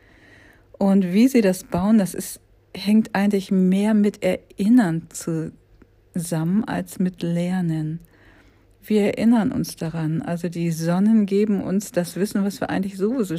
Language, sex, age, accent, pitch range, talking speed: German, female, 50-69, German, 155-195 Hz, 140 wpm